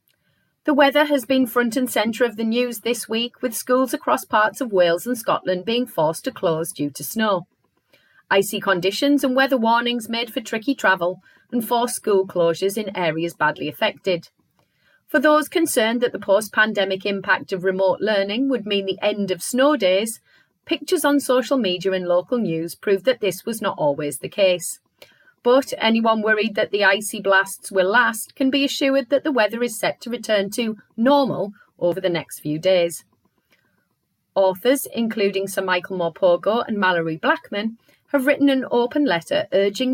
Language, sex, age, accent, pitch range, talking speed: English, female, 30-49, British, 185-250 Hz, 175 wpm